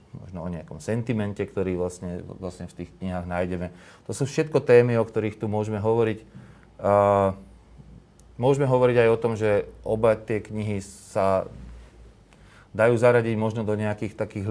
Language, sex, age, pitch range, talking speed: Slovak, male, 30-49, 95-110 Hz, 150 wpm